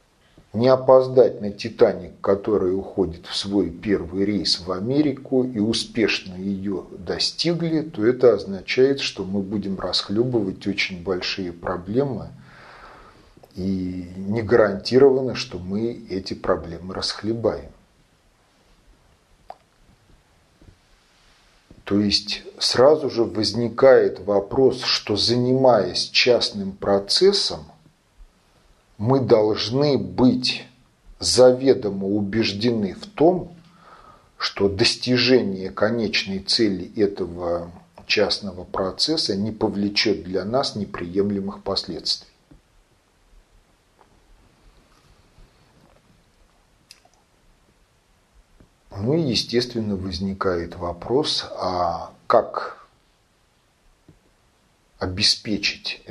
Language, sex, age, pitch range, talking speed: Russian, male, 40-59, 95-125 Hz, 75 wpm